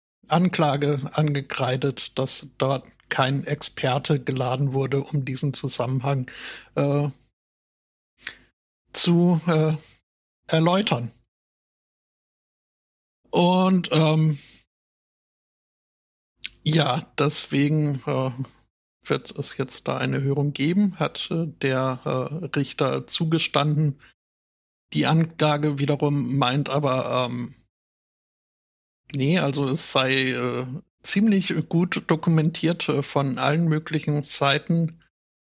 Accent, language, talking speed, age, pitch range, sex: German, German, 90 wpm, 60-79, 130-155 Hz, male